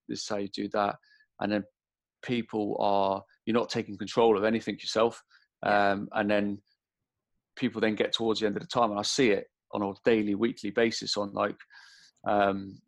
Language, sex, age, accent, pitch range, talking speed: English, male, 30-49, British, 100-110 Hz, 190 wpm